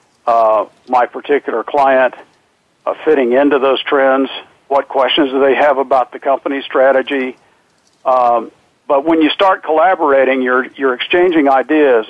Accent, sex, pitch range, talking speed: American, male, 130-155 Hz, 140 wpm